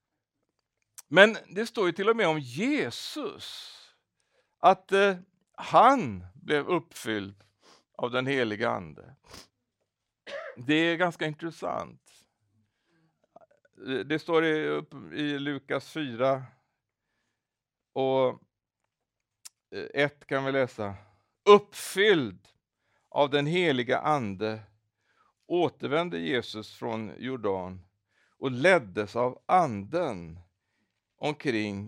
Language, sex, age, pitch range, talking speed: Swedish, male, 60-79, 110-150 Hz, 90 wpm